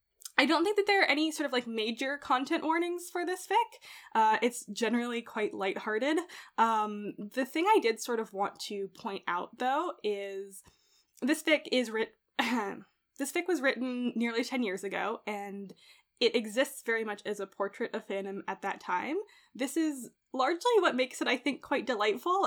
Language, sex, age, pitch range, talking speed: English, female, 10-29, 210-285 Hz, 185 wpm